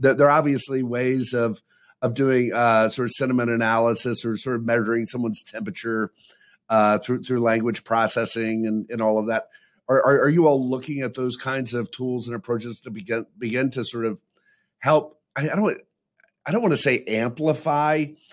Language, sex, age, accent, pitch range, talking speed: English, male, 50-69, American, 115-135 Hz, 180 wpm